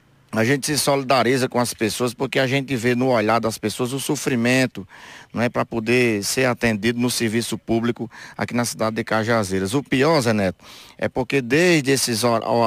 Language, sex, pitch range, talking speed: Portuguese, male, 115-135 Hz, 185 wpm